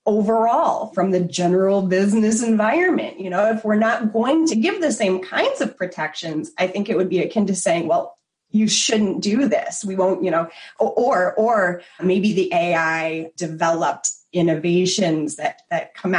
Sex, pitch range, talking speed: female, 175-225 Hz, 170 wpm